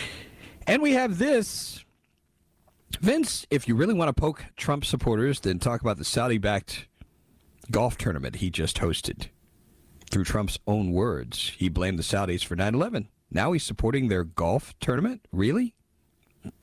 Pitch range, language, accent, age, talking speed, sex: 80-125 Hz, English, American, 50-69, 145 wpm, male